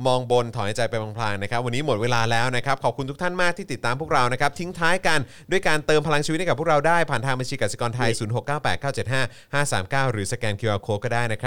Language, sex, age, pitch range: Thai, male, 20-39, 100-140 Hz